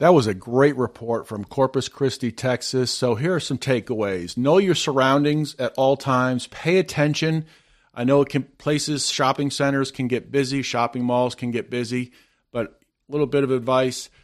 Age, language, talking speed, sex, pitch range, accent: 40-59, English, 175 wpm, male, 120-140 Hz, American